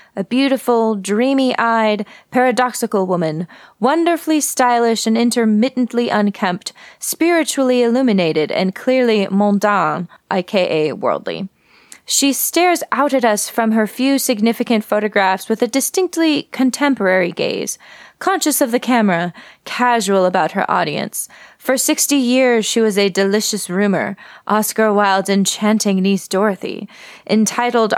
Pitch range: 200-255 Hz